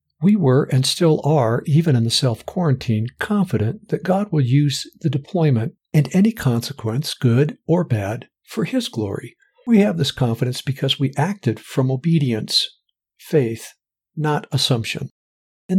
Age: 60-79